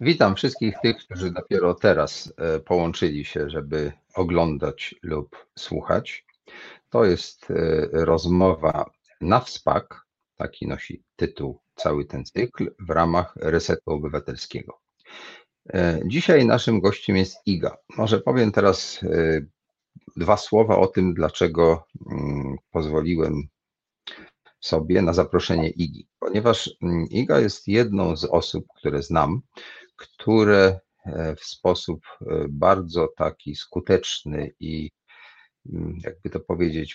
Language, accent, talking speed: Polish, native, 100 wpm